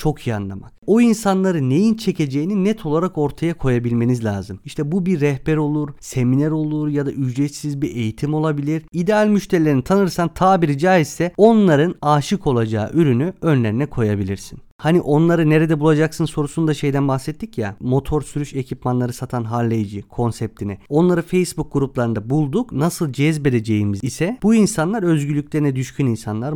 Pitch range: 120-180 Hz